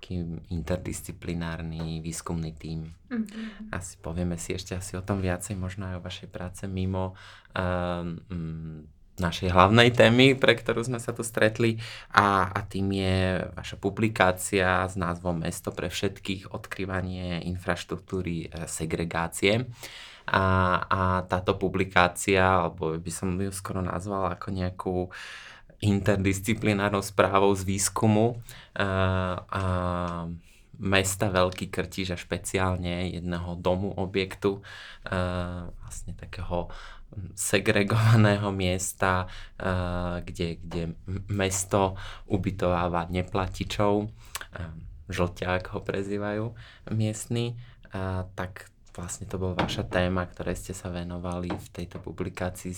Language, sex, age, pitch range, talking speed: Slovak, male, 20-39, 90-100 Hz, 110 wpm